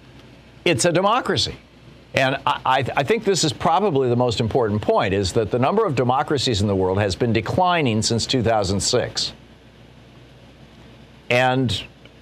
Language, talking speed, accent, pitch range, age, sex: English, 150 wpm, American, 100-125 Hz, 50-69, male